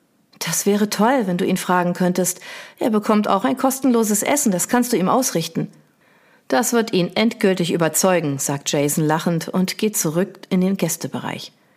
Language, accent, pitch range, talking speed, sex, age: German, German, 170-220 Hz, 170 wpm, female, 40-59